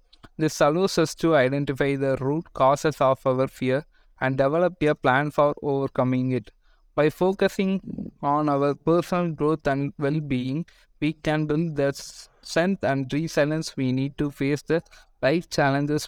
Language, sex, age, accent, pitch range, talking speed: English, male, 20-39, Indian, 135-160 Hz, 150 wpm